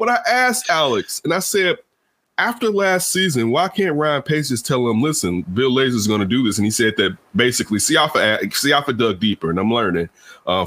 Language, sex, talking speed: English, male, 200 wpm